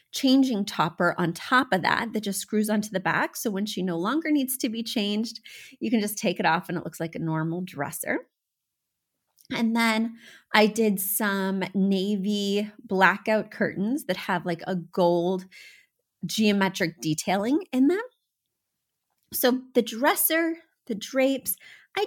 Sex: female